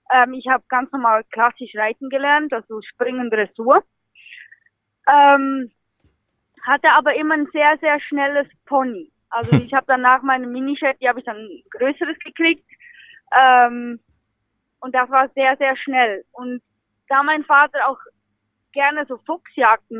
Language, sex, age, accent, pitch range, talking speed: German, female, 20-39, German, 245-280 Hz, 140 wpm